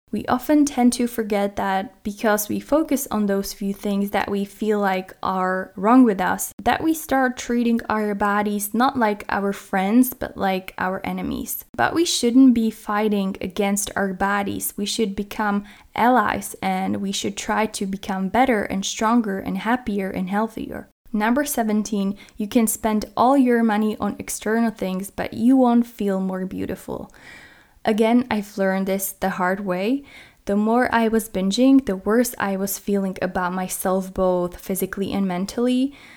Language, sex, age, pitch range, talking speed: English, female, 10-29, 195-235 Hz, 165 wpm